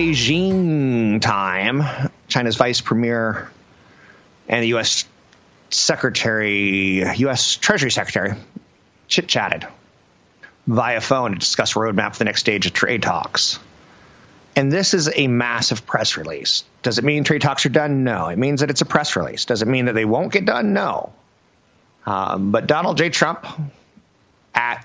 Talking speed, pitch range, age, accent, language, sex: 150 wpm, 115-155 Hz, 30-49, American, English, male